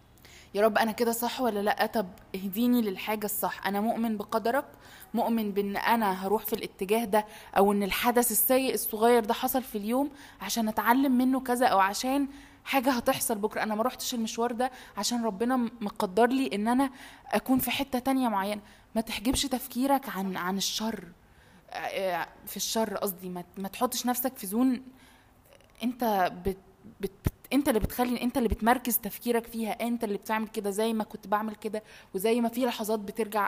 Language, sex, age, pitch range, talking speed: Arabic, female, 20-39, 205-250 Hz, 170 wpm